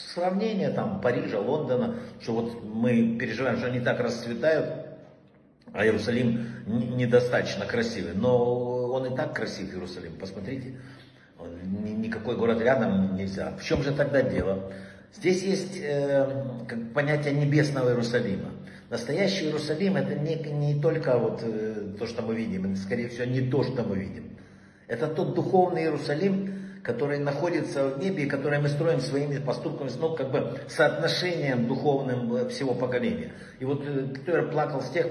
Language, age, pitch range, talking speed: Russian, 60-79, 115-155 Hz, 145 wpm